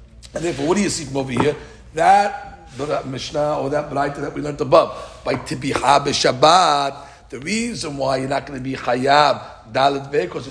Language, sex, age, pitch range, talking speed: English, male, 50-69, 125-155 Hz, 185 wpm